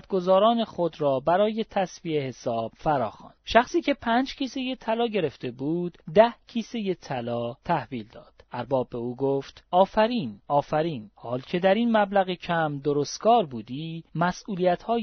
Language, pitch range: Persian, 145-220 Hz